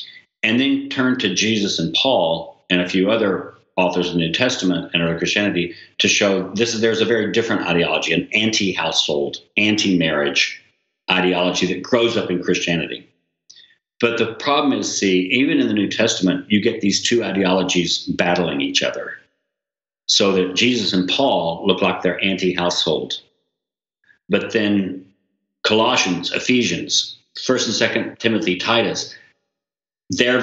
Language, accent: English, American